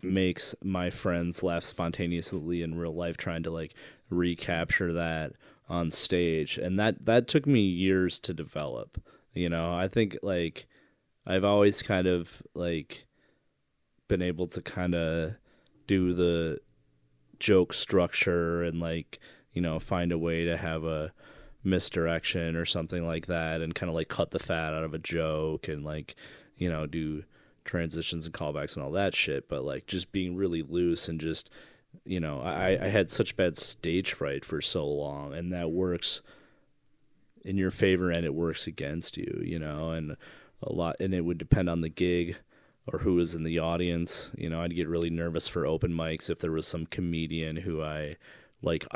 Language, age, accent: English, 20-39, American